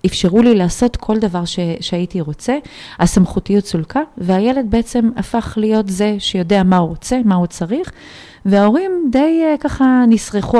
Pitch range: 170-215 Hz